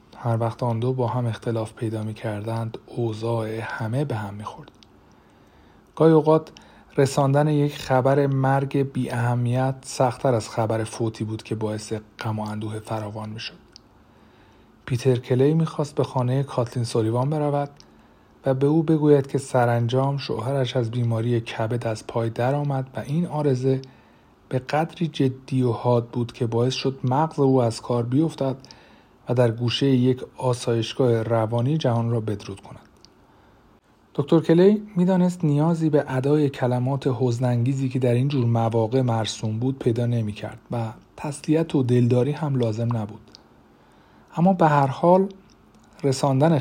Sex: male